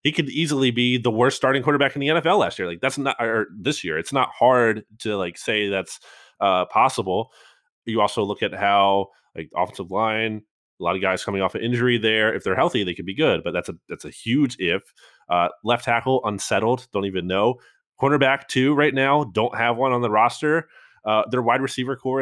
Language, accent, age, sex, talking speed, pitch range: English, American, 20-39, male, 220 wpm, 100-130 Hz